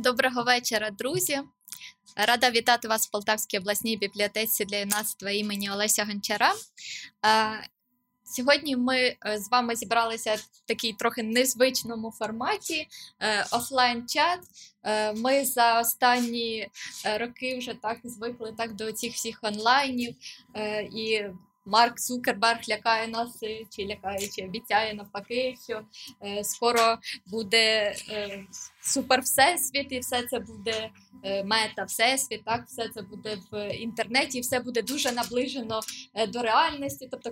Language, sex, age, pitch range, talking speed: Ukrainian, female, 20-39, 210-250 Hz, 115 wpm